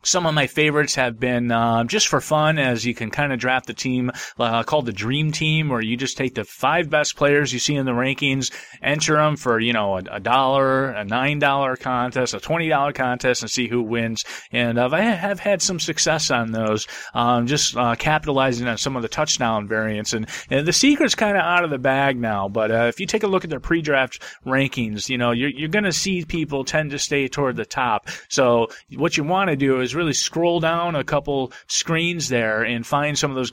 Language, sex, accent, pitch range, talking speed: English, male, American, 115-150 Hz, 235 wpm